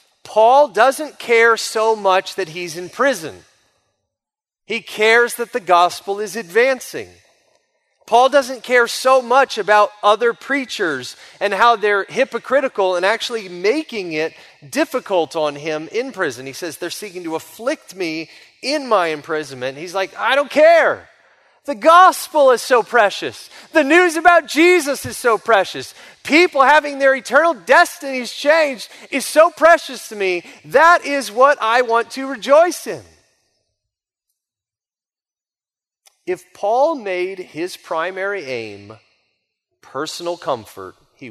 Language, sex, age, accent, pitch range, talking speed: English, male, 30-49, American, 175-280 Hz, 135 wpm